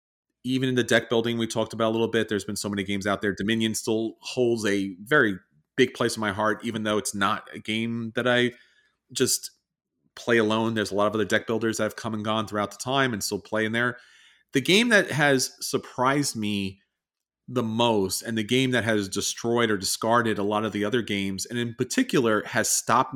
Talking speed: 225 wpm